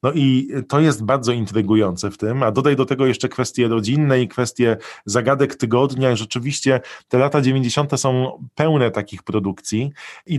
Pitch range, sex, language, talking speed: 115-135 Hz, male, Polish, 160 wpm